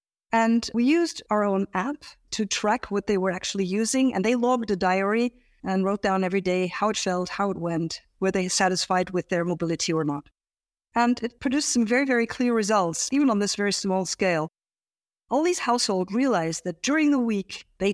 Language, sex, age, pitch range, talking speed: English, female, 50-69, 185-240 Hz, 200 wpm